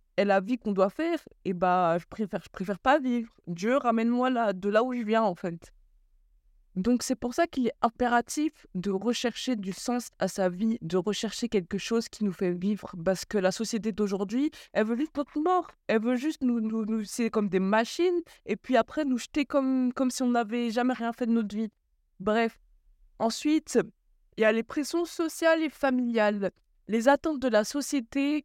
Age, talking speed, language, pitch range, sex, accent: 20-39, 205 wpm, French, 195-255 Hz, female, French